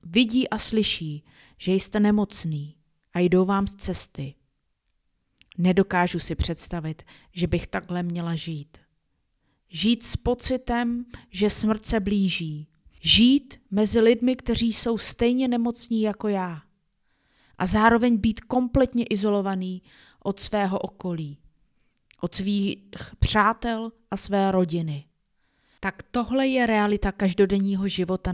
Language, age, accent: Czech, 30-49, native